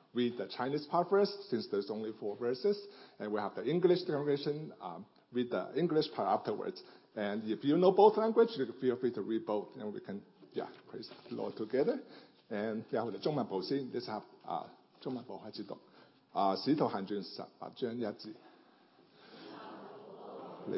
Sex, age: male, 50-69